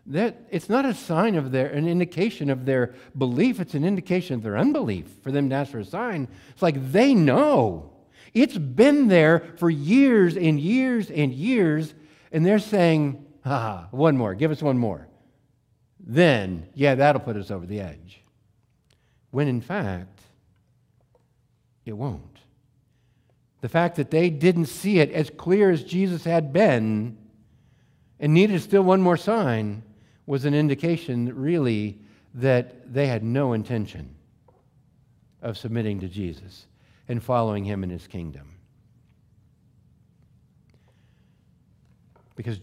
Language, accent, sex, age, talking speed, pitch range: English, American, male, 60-79, 145 wpm, 115-160 Hz